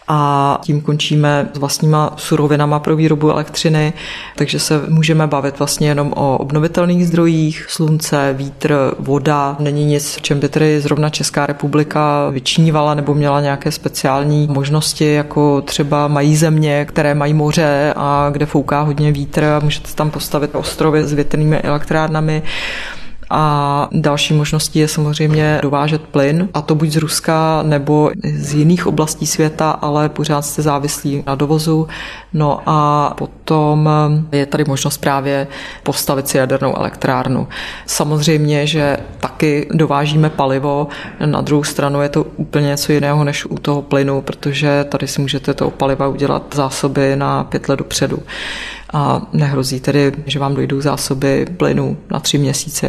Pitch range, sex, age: 145-155 Hz, female, 30-49